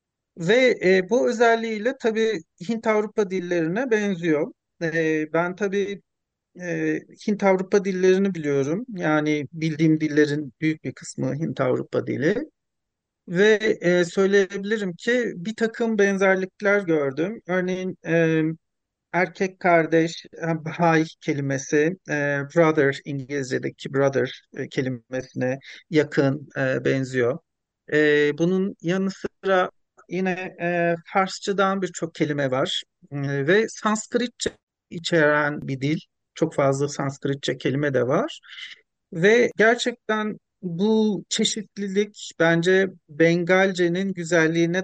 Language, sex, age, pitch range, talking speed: Turkish, male, 50-69, 150-195 Hz, 100 wpm